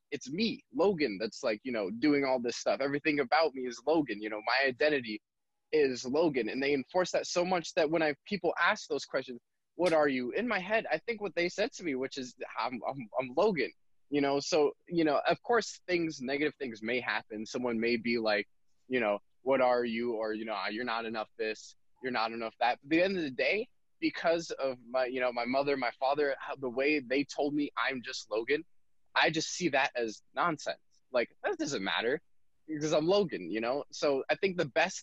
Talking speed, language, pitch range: 220 wpm, English, 120-175 Hz